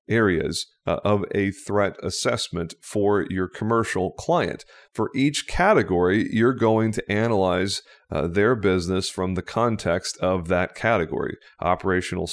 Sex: male